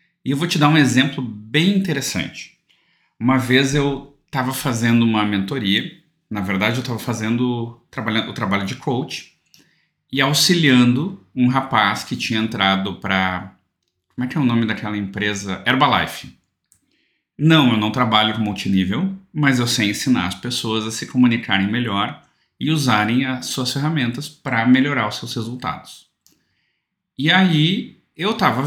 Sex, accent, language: male, Brazilian, Portuguese